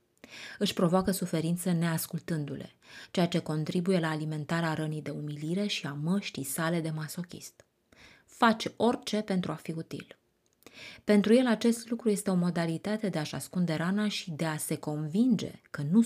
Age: 20-39